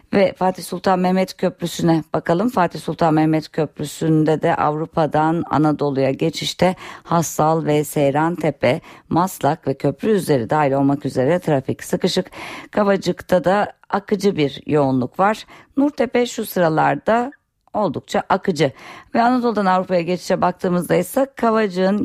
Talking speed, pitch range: 120 wpm, 150-200 Hz